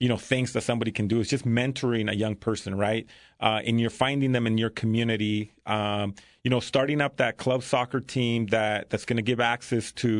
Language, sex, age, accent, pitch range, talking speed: English, male, 30-49, American, 110-125 Hz, 220 wpm